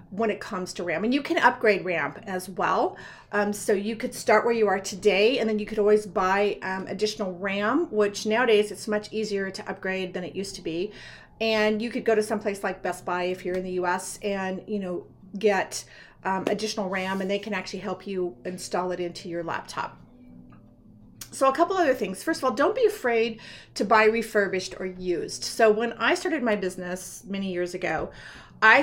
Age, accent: 40-59, American